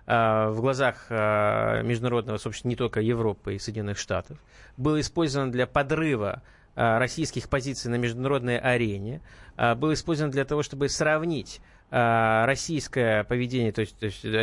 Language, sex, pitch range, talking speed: Russian, male, 110-135 Hz, 125 wpm